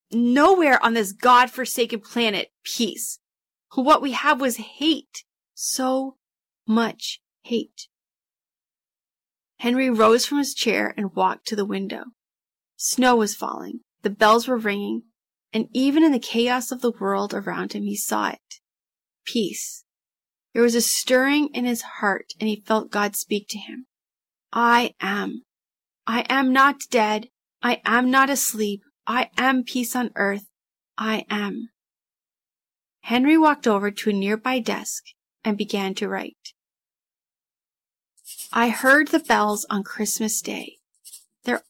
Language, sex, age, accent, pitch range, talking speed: English, female, 30-49, American, 215-260 Hz, 135 wpm